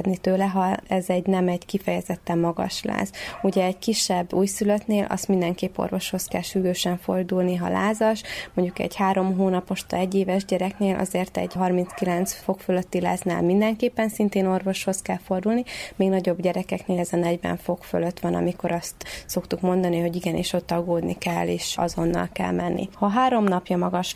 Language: Hungarian